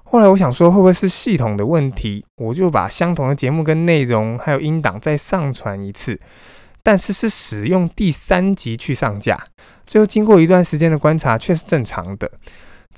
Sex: male